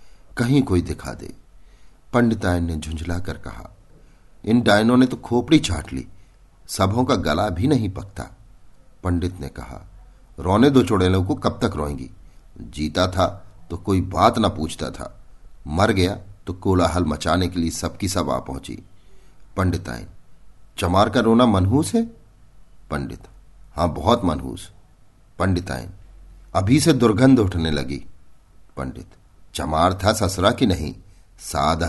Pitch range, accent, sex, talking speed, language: 85-110 Hz, native, male, 135 wpm, Hindi